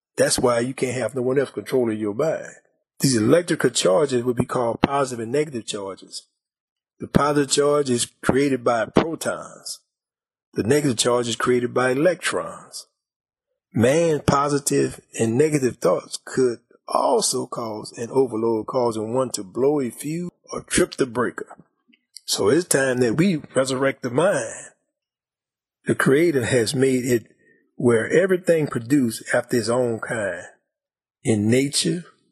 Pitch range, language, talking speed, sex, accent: 120-145 Hz, English, 145 wpm, male, American